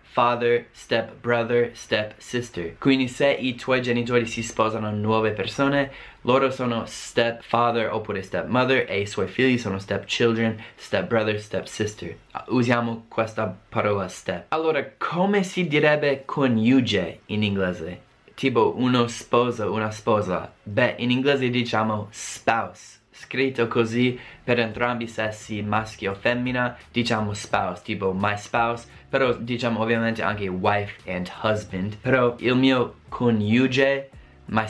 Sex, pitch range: male, 110-130 Hz